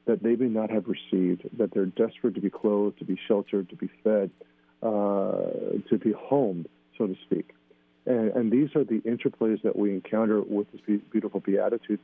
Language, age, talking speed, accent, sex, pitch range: English, 40-59, 190 wpm, American, male, 100-115 Hz